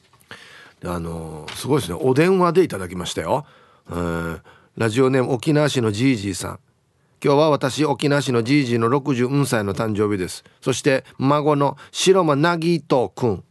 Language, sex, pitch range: Japanese, male, 115-165 Hz